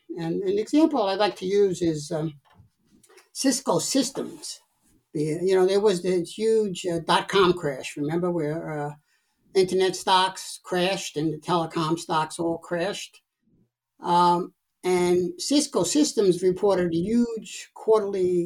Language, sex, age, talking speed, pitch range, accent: English, male, 60-79, 130 wpm, 165-225 Hz, American